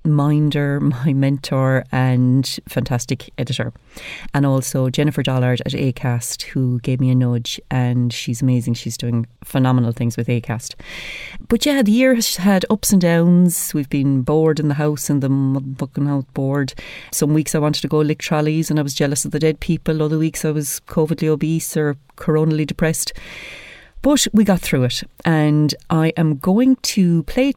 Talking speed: 180 wpm